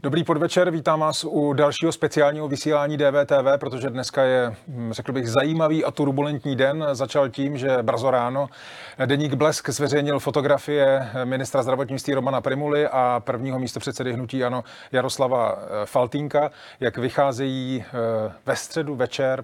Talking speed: 135 wpm